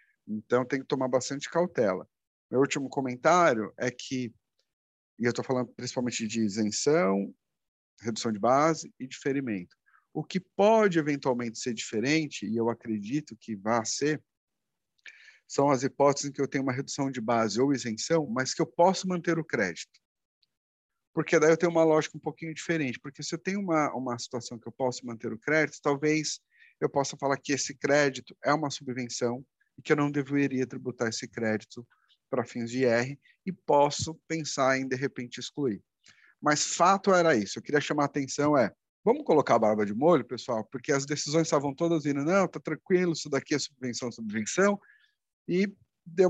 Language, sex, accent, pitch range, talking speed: Portuguese, male, Brazilian, 120-155 Hz, 180 wpm